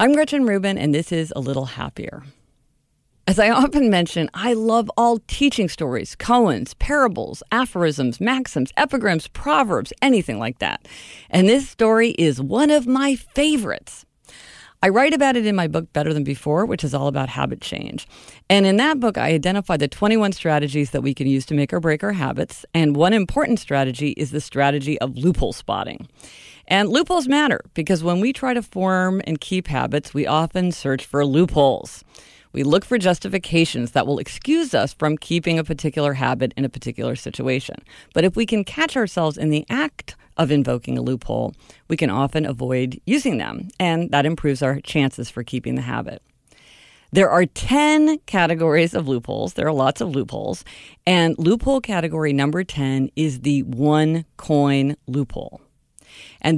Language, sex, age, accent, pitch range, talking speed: English, female, 50-69, American, 140-220 Hz, 175 wpm